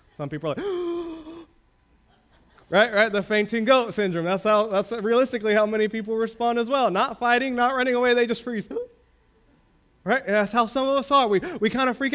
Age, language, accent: 20-39, English, American